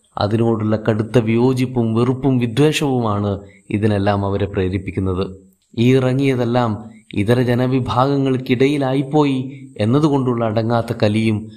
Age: 30-49